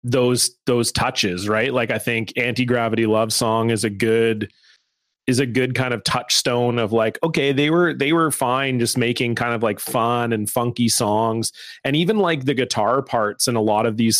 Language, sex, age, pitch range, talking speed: English, male, 30-49, 115-130 Hz, 200 wpm